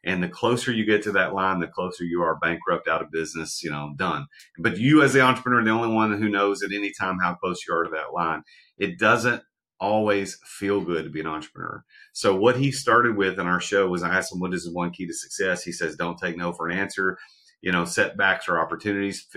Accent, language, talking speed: American, English, 250 wpm